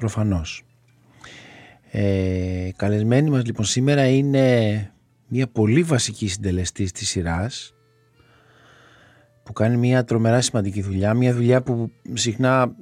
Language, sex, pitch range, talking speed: Greek, male, 100-130 Hz, 110 wpm